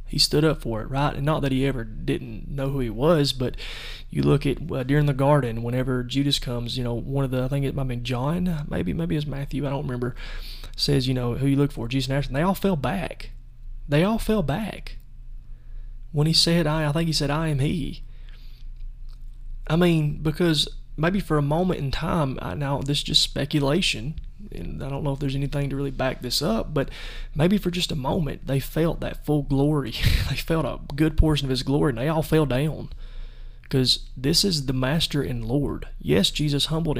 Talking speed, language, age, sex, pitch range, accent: 220 wpm, English, 20-39, male, 125-150 Hz, American